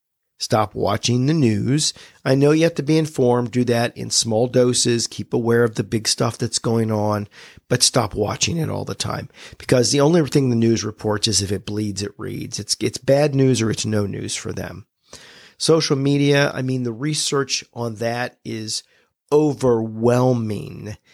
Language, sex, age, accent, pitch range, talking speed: English, male, 40-59, American, 110-130 Hz, 185 wpm